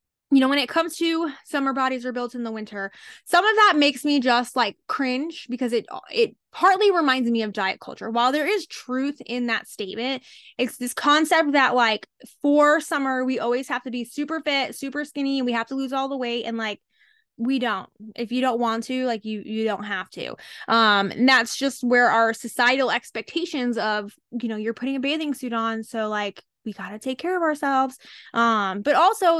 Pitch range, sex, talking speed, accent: 235-295 Hz, female, 215 wpm, American